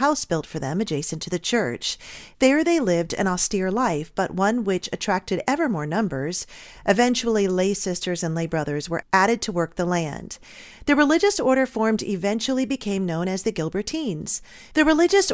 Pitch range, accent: 170-245 Hz, American